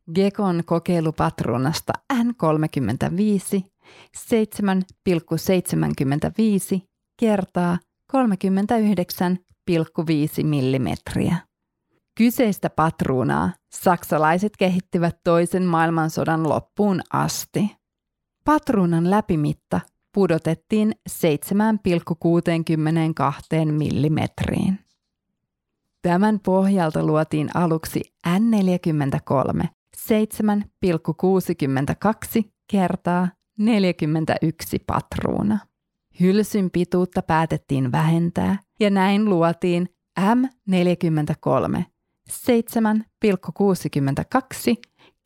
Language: Finnish